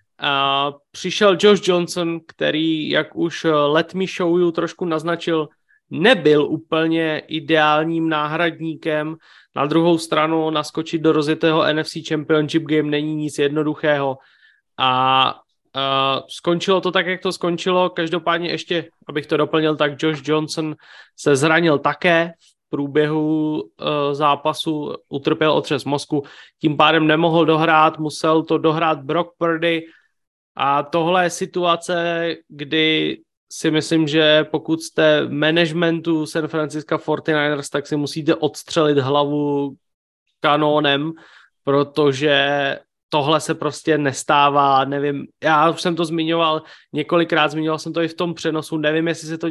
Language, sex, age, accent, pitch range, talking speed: Czech, male, 20-39, native, 145-165 Hz, 130 wpm